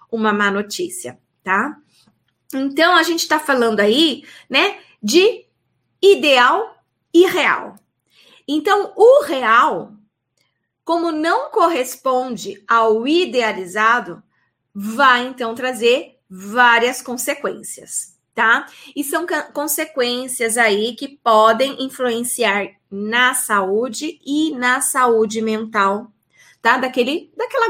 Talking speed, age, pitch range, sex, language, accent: 95 wpm, 20-39, 225-300 Hz, female, Portuguese, Brazilian